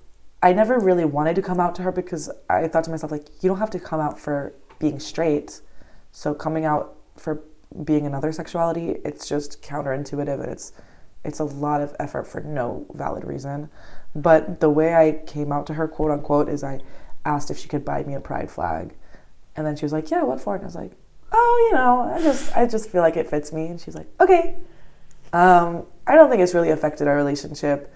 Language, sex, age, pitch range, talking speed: English, female, 20-39, 145-165 Hz, 220 wpm